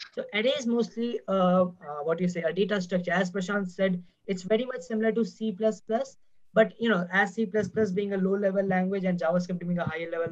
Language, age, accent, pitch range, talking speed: English, 20-39, Indian, 185-215 Hz, 205 wpm